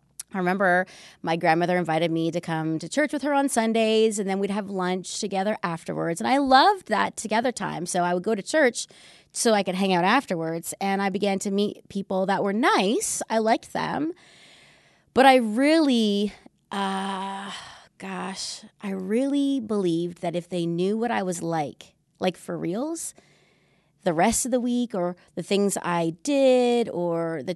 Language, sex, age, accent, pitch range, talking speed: English, female, 30-49, American, 170-215 Hz, 180 wpm